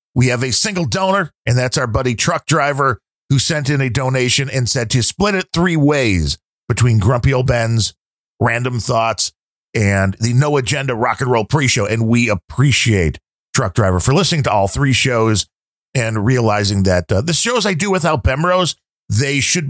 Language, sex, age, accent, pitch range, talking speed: English, male, 40-59, American, 100-135 Hz, 185 wpm